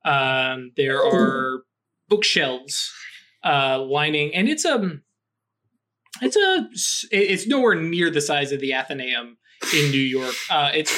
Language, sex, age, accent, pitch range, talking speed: English, male, 20-39, American, 135-160 Hz, 130 wpm